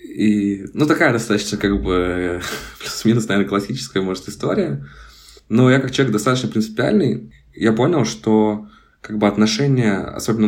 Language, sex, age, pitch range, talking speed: Russian, male, 20-39, 95-110 Hz, 135 wpm